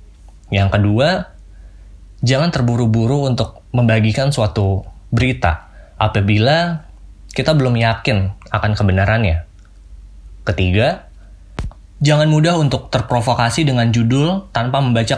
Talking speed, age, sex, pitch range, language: 90 wpm, 20-39, male, 100-125 Hz, Indonesian